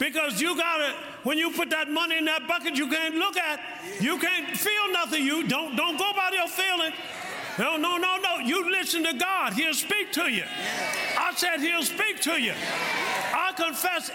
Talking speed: 200 wpm